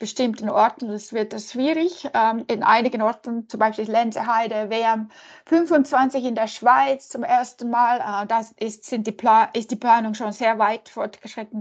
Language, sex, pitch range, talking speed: German, female, 215-260 Hz, 170 wpm